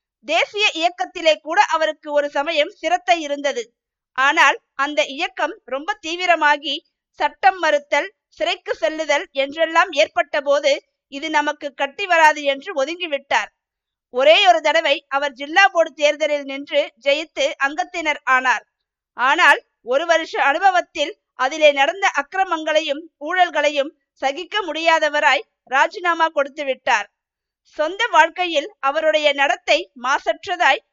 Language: Tamil